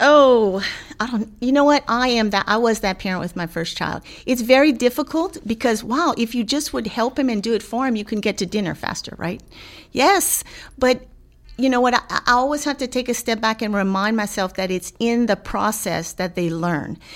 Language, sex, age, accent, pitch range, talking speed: English, female, 40-59, American, 190-250 Hz, 225 wpm